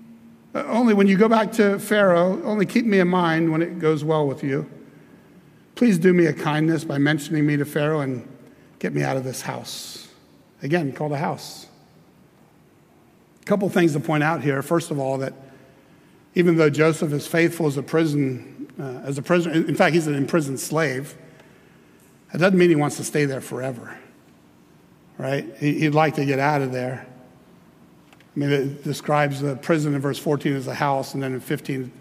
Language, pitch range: English, 140-185 Hz